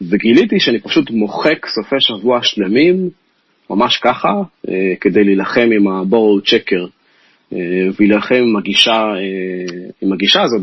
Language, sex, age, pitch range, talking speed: Hebrew, male, 30-49, 95-130 Hz, 100 wpm